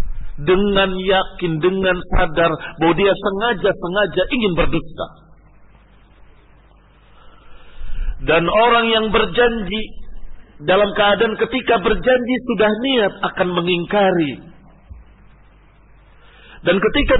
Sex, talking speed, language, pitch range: male, 80 wpm, Indonesian, 155-200 Hz